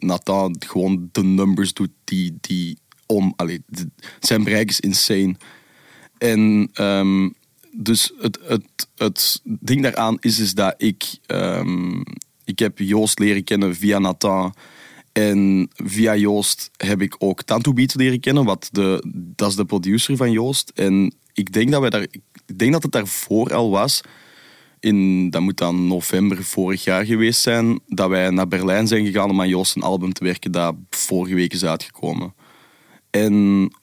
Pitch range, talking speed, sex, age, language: 95-115 Hz, 165 wpm, male, 20-39, Dutch